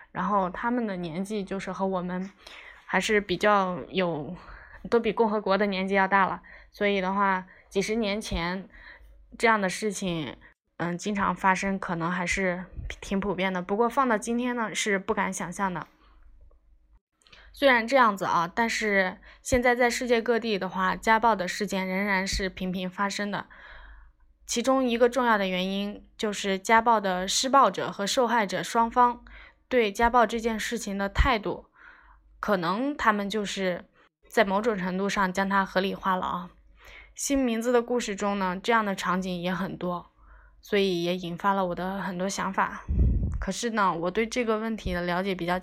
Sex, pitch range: female, 185-225 Hz